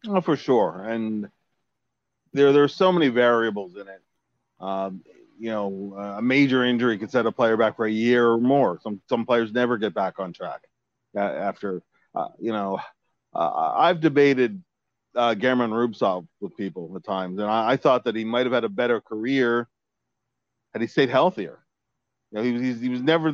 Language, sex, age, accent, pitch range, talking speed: English, male, 40-59, American, 110-130 Hz, 190 wpm